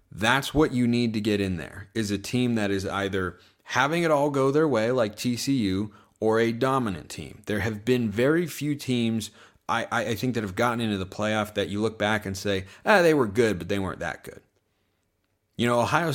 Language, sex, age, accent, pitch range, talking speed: English, male, 30-49, American, 100-130 Hz, 220 wpm